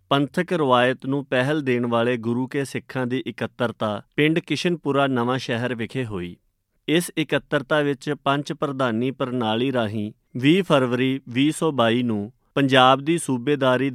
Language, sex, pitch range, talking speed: Punjabi, male, 120-145 Hz, 135 wpm